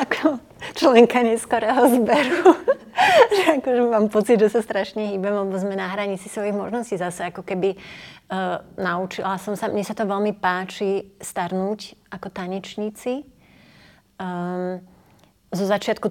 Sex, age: female, 30-49